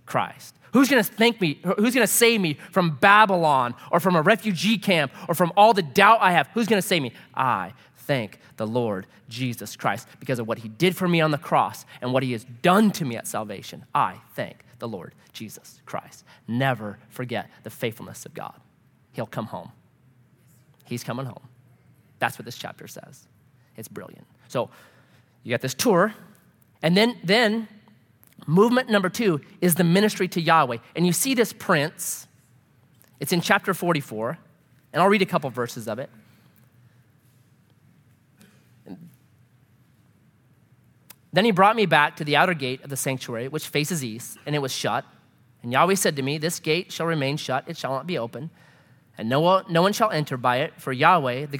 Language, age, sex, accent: English, 30-49, male, American